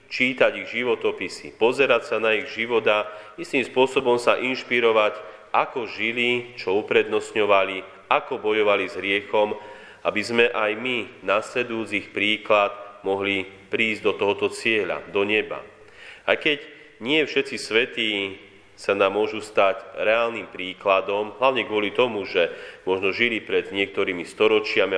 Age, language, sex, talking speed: 30-49, Slovak, male, 130 wpm